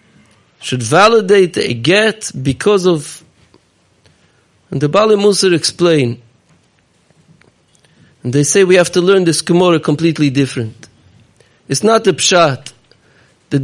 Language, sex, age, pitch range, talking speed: English, male, 50-69, 140-185 Hz, 115 wpm